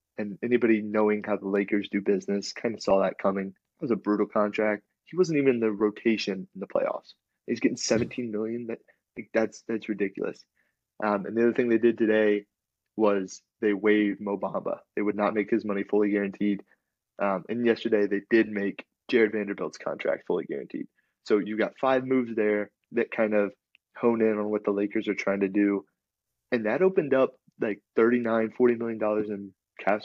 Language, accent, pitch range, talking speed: English, American, 100-115 Hz, 190 wpm